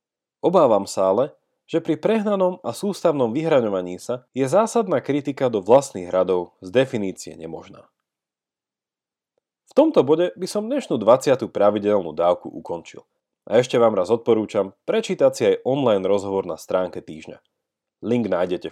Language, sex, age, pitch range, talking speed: Slovak, male, 30-49, 100-165 Hz, 140 wpm